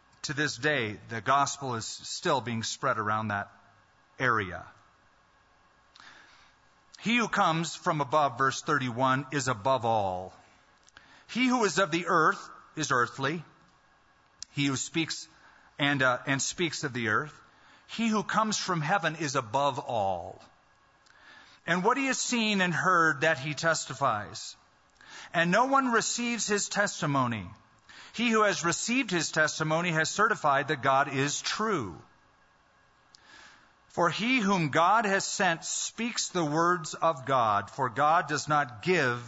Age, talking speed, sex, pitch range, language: 40-59, 140 wpm, male, 130-180 Hz, English